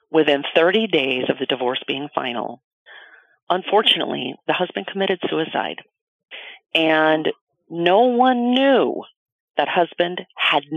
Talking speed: 110 wpm